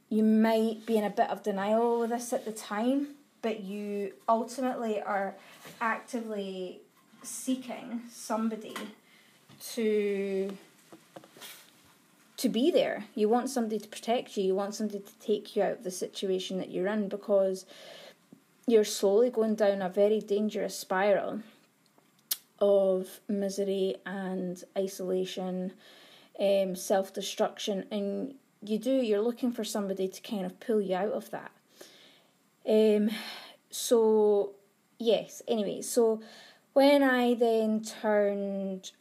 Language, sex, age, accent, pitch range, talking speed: English, female, 20-39, British, 195-225 Hz, 130 wpm